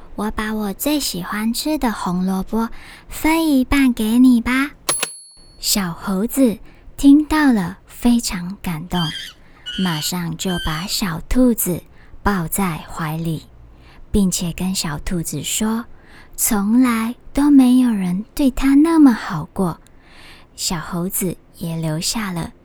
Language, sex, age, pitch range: Chinese, male, 20-39, 175-250 Hz